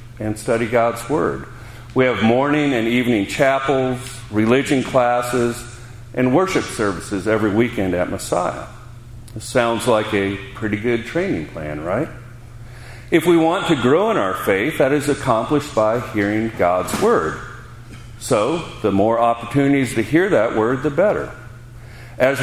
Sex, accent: male, American